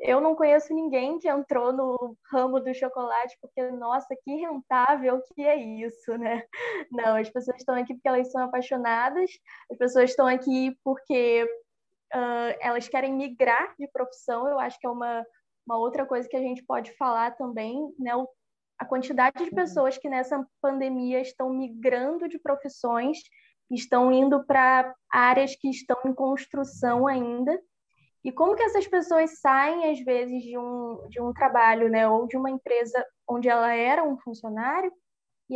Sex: female